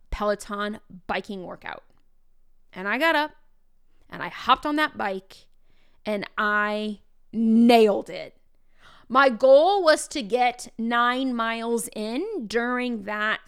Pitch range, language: 210-260 Hz, English